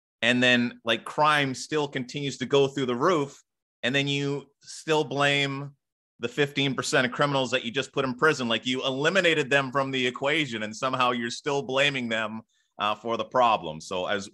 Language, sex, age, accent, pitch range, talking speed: English, male, 30-49, American, 90-135 Hz, 190 wpm